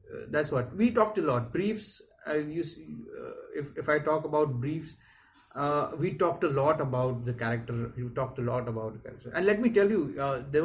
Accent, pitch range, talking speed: Indian, 125-160 Hz, 220 wpm